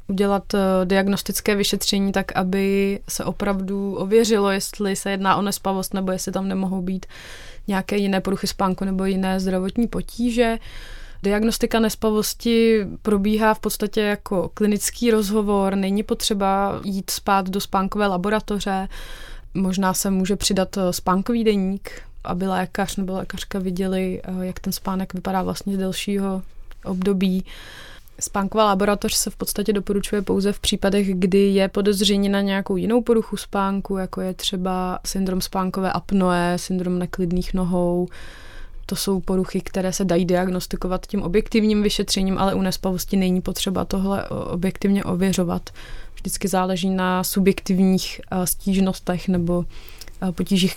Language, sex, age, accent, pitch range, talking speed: Czech, female, 20-39, native, 185-205 Hz, 130 wpm